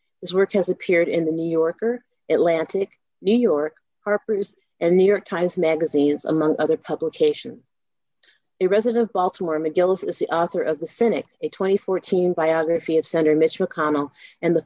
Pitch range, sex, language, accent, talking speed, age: 155-195 Hz, female, English, American, 165 wpm, 40-59